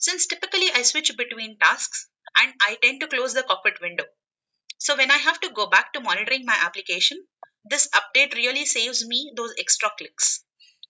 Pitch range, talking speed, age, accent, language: 230-310 Hz, 180 wpm, 30-49, Indian, English